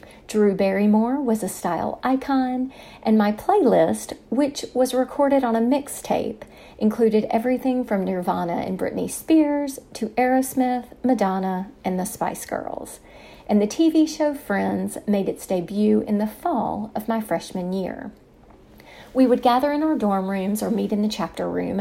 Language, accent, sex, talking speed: English, American, female, 155 wpm